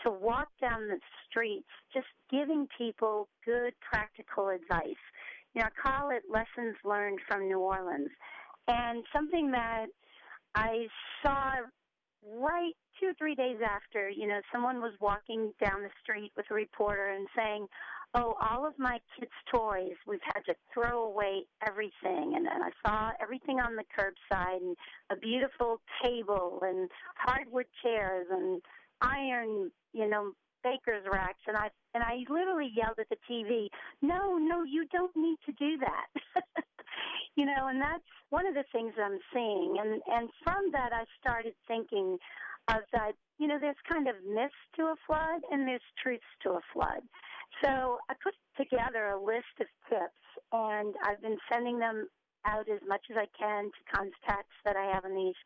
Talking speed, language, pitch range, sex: 170 wpm, English, 210-285 Hz, female